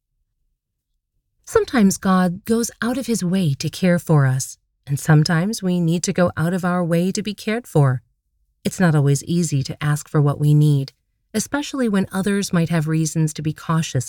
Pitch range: 145-195 Hz